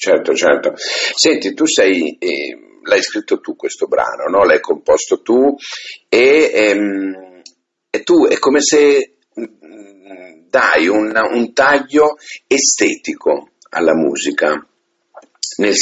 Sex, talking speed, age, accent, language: male, 120 wpm, 50-69, native, Italian